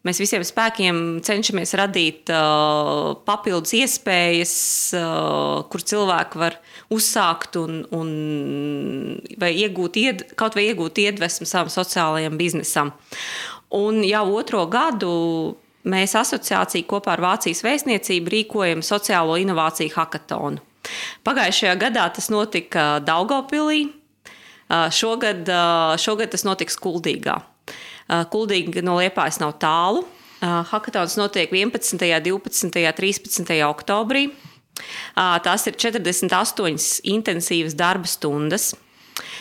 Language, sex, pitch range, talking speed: English, female, 165-210 Hz, 95 wpm